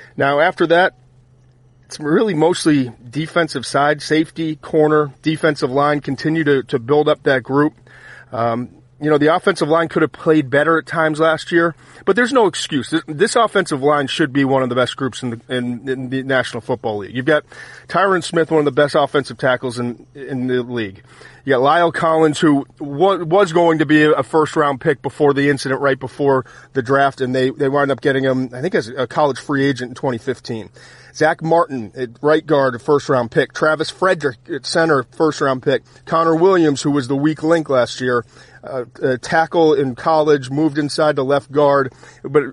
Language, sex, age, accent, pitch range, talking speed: English, male, 40-59, American, 130-155 Hz, 200 wpm